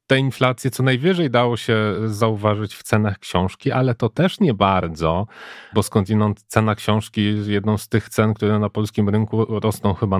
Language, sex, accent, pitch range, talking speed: Polish, male, native, 100-120 Hz, 175 wpm